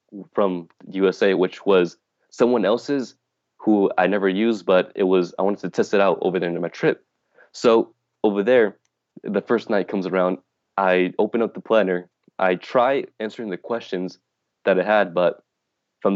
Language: English